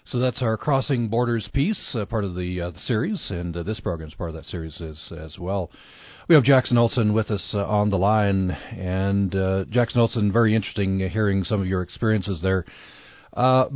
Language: English